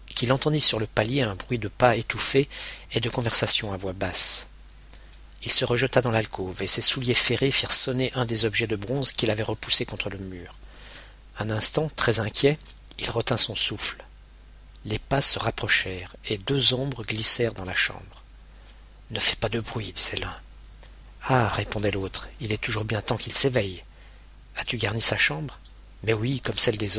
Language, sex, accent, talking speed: French, male, French, 195 wpm